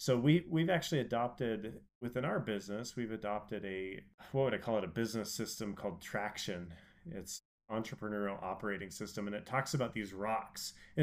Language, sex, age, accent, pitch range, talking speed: English, male, 30-49, American, 105-140 Hz, 175 wpm